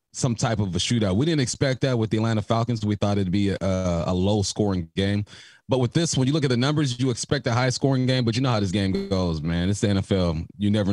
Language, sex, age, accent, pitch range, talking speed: English, male, 30-49, American, 100-125 Hz, 280 wpm